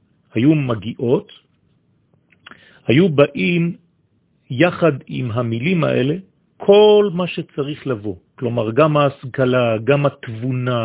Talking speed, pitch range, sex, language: 95 wpm, 115-155 Hz, male, French